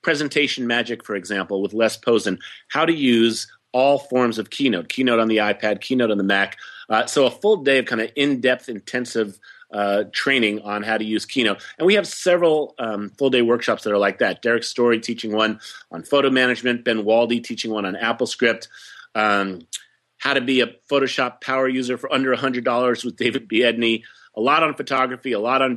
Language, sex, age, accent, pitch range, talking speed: English, male, 30-49, American, 110-135 Hz, 200 wpm